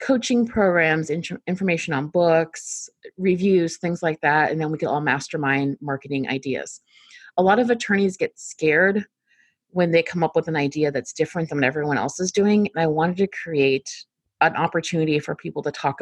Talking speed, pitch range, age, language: 185 wpm, 145-180 Hz, 30-49, English